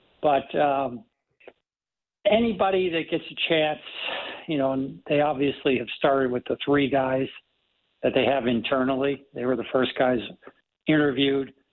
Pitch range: 125-140 Hz